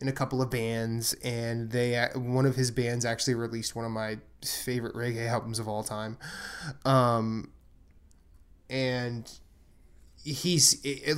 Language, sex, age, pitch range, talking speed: English, male, 20-39, 115-140 Hz, 135 wpm